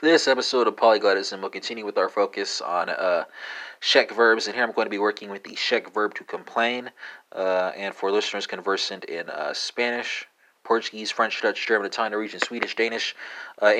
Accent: American